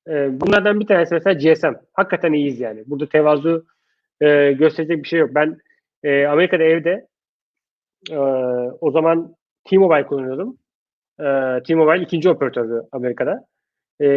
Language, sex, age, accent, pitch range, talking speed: Turkish, male, 30-49, native, 150-200 Hz, 125 wpm